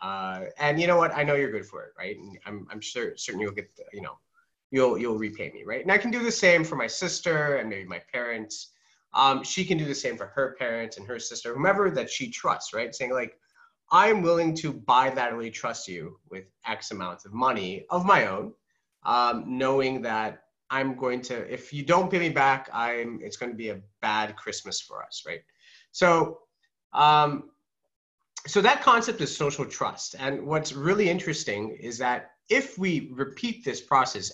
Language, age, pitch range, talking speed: English, 30-49, 120-170 Hz, 200 wpm